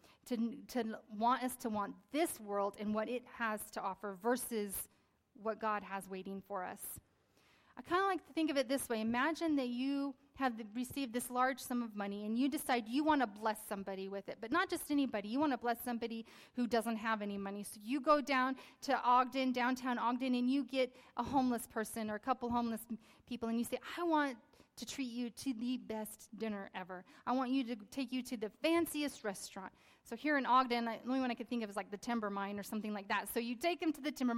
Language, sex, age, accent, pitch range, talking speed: English, female, 30-49, American, 225-280 Hz, 235 wpm